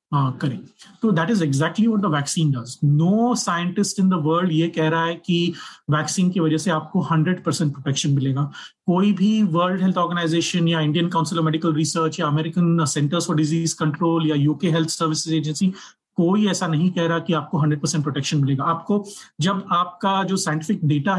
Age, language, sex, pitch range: 30-49, Hindi, male, 160-200 Hz